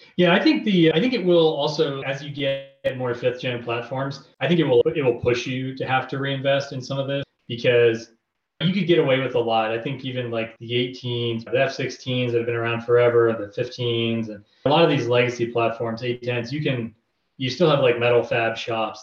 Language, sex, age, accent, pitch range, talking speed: English, male, 30-49, American, 115-140 Hz, 225 wpm